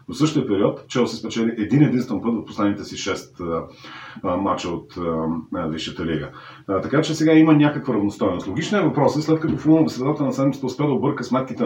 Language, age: Bulgarian, 40-59